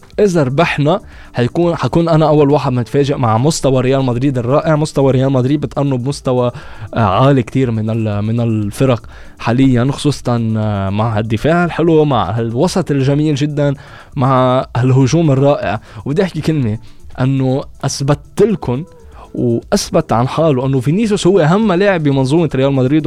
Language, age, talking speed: Arabic, 20-39, 130 wpm